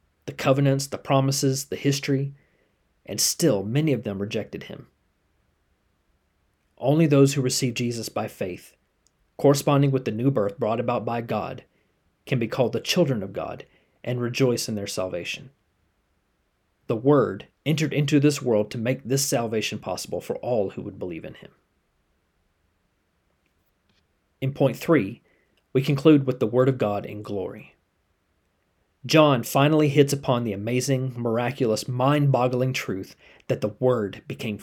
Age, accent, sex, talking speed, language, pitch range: 30-49, American, male, 145 wpm, English, 95-140 Hz